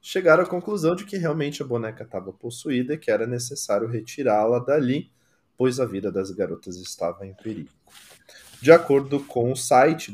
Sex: male